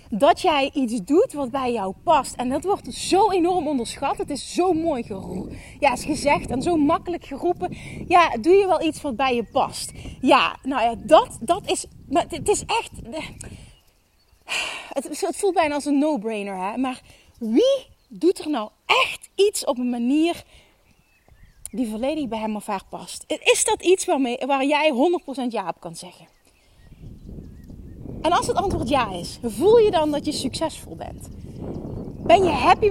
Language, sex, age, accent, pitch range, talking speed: Dutch, female, 30-49, Dutch, 260-345 Hz, 170 wpm